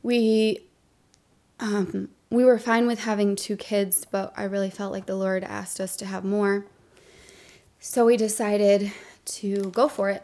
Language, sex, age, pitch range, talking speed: English, female, 20-39, 185-205 Hz, 165 wpm